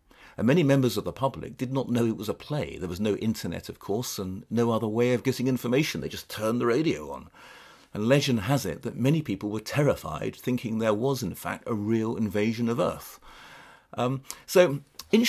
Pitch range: 100-130 Hz